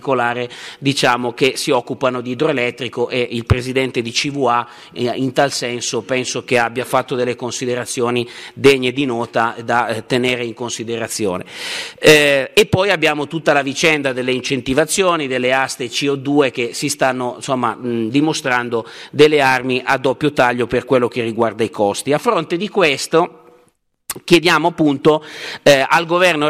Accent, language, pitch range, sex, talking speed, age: native, Italian, 125-155 Hz, male, 145 wpm, 50-69